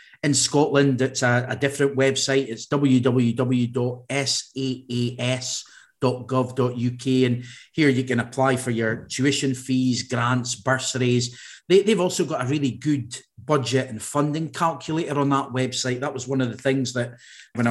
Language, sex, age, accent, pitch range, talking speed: English, male, 40-59, British, 120-135 Hz, 140 wpm